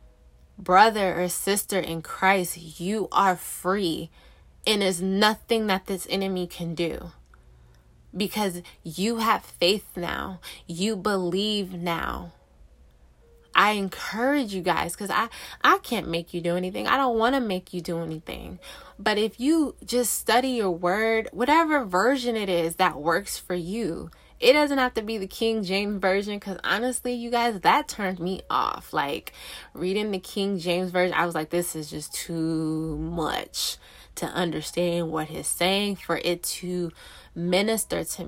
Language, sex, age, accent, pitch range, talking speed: English, female, 20-39, American, 170-215 Hz, 155 wpm